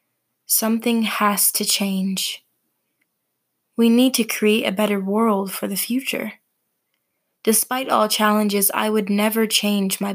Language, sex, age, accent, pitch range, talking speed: English, female, 20-39, American, 200-225 Hz, 130 wpm